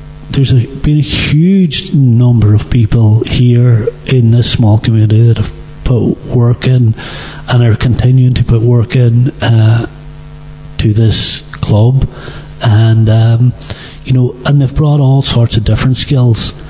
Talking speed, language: 145 wpm, English